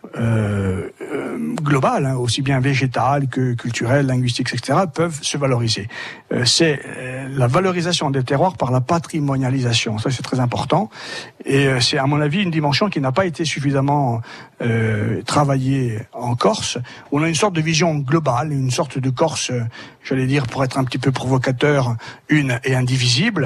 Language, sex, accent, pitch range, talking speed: French, male, French, 125-150 Hz, 175 wpm